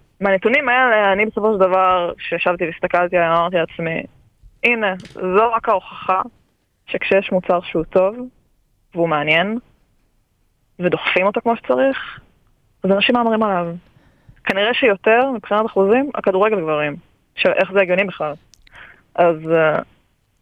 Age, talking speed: 20-39, 120 wpm